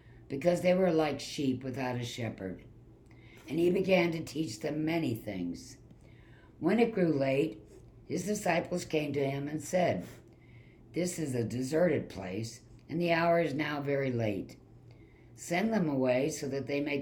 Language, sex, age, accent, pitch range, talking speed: English, female, 60-79, American, 115-155 Hz, 160 wpm